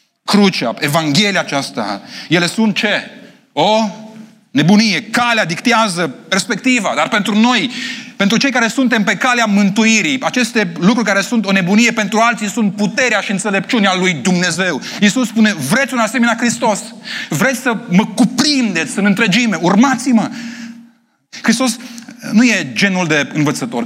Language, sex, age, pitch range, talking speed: Romanian, male, 30-49, 200-240 Hz, 135 wpm